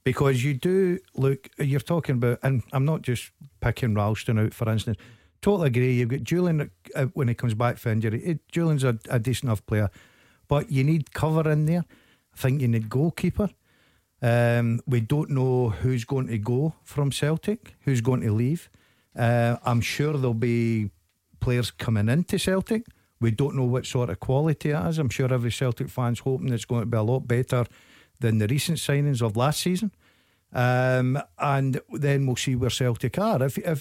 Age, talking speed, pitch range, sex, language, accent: 50-69, 190 wpm, 115-145 Hz, male, English, British